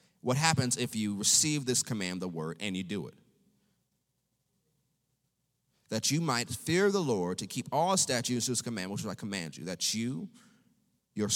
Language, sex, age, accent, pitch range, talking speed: English, male, 30-49, American, 120-185 Hz, 170 wpm